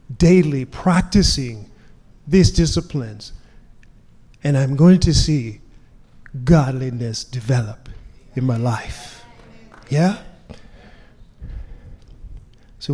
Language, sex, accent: English, male, American